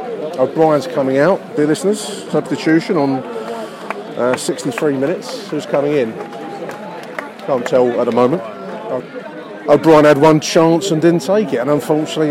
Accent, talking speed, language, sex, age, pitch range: British, 135 wpm, English, male, 30-49, 145-190 Hz